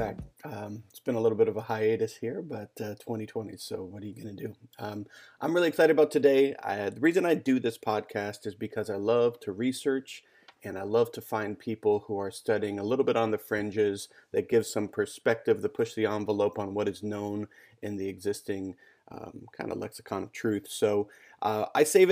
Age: 30-49